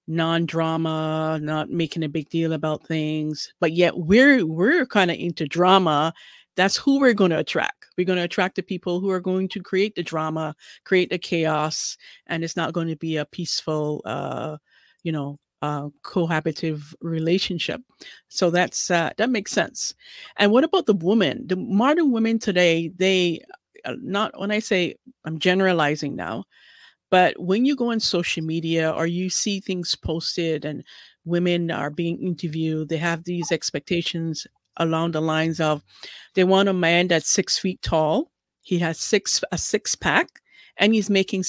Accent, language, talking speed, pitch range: American, English, 170 wpm, 160-195 Hz